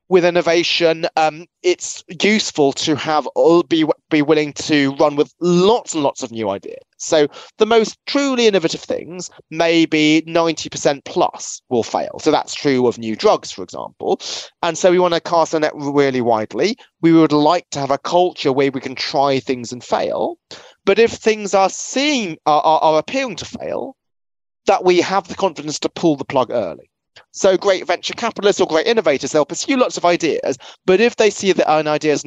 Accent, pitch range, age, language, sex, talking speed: British, 140-185 Hz, 30-49, English, male, 190 wpm